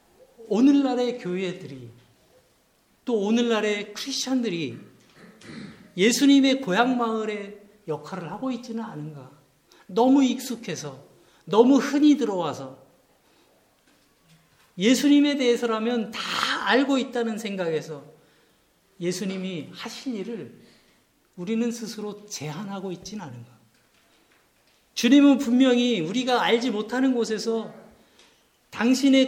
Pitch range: 175-250 Hz